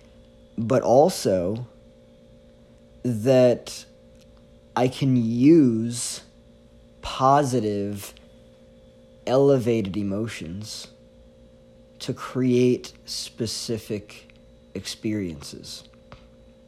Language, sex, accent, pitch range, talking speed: English, male, American, 105-130 Hz, 45 wpm